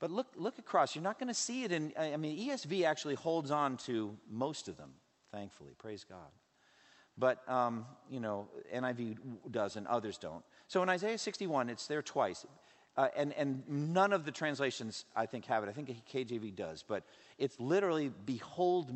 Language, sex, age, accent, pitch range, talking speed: English, male, 50-69, American, 130-195 Hz, 185 wpm